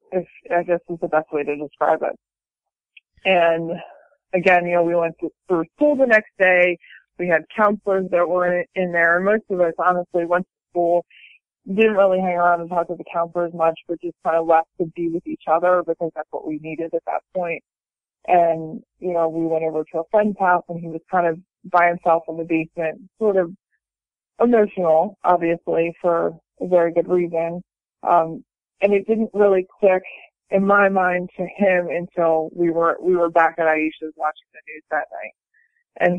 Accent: American